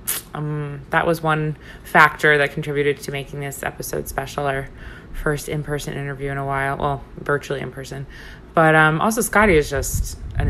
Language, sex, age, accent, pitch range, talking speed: English, female, 20-39, American, 135-160 Hz, 170 wpm